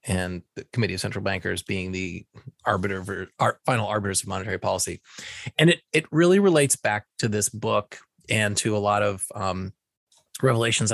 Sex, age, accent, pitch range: male, 30-49, American, 100-120 Hz